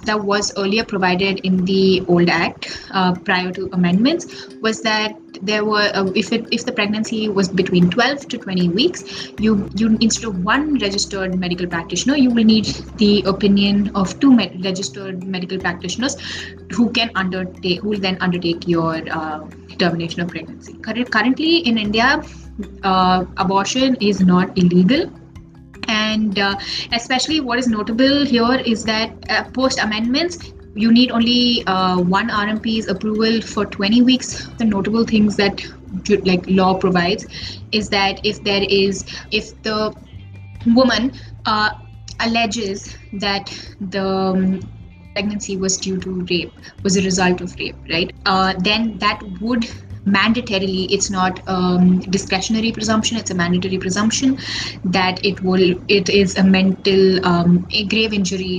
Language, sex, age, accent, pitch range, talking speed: English, female, 20-39, Indian, 185-220 Hz, 150 wpm